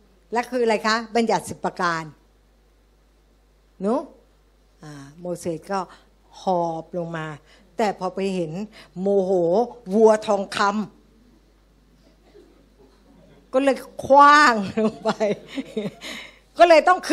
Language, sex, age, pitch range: Thai, female, 60-79, 200-270 Hz